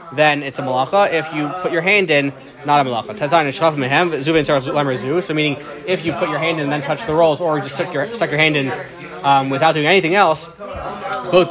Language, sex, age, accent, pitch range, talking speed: English, male, 20-39, American, 145-175 Hz, 210 wpm